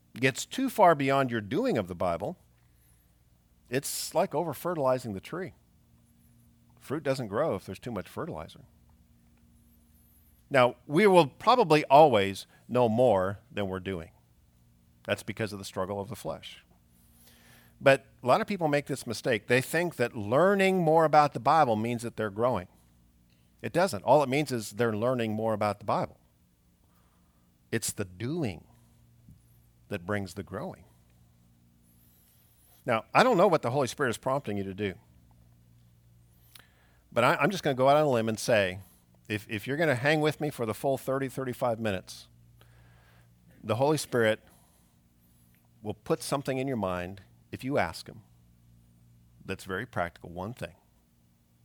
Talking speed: 160 wpm